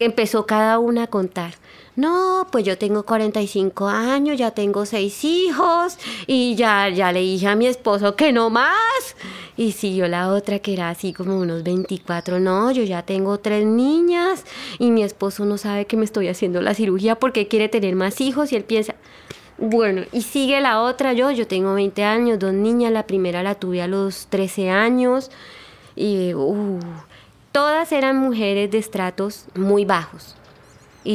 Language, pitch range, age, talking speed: Spanish, 195-240 Hz, 20-39, 175 wpm